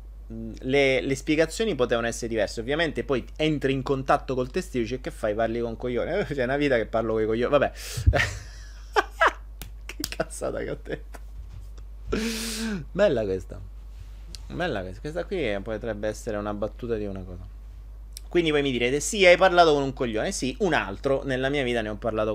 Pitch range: 105-140 Hz